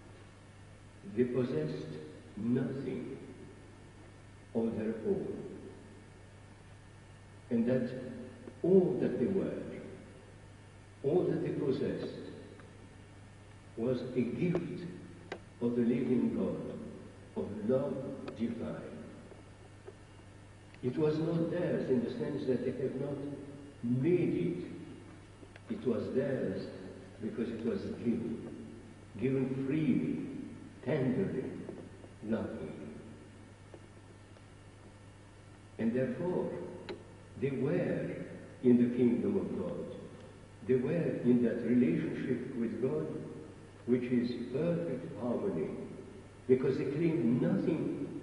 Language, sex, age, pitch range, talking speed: English, male, 60-79, 100-130 Hz, 90 wpm